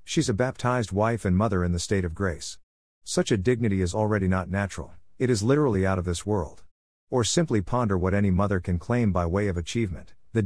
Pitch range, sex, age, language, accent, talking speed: 90-115 Hz, male, 50-69, English, American, 220 wpm